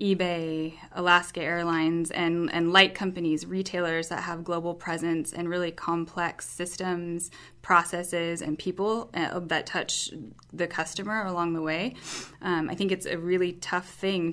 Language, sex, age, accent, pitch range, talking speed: English, female, 20-39, American, 165-185 Hz, 145 wpm